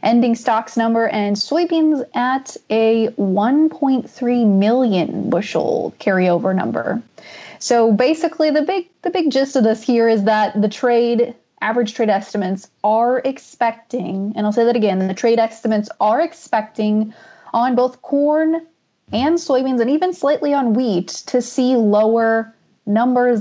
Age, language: 20-39, English